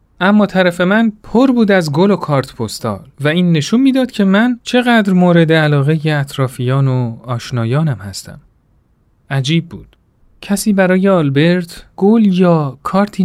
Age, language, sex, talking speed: 40-59, Persian, male, 140 wpm